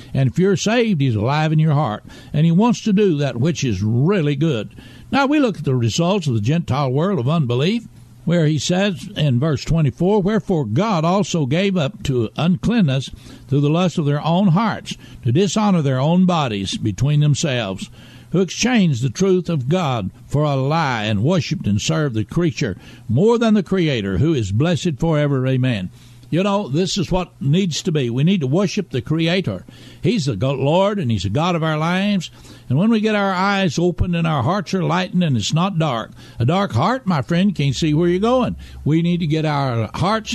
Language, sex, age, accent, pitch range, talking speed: English, male, 60-79, American, 130-185 Hz, 205 wpm